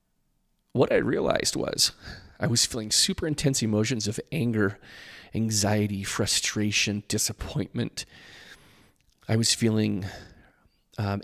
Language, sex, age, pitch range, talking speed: English, male, 30-49, 100-115 Hz, 100 wpm